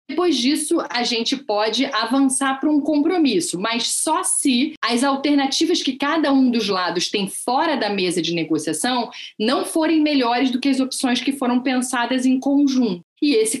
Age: 30-49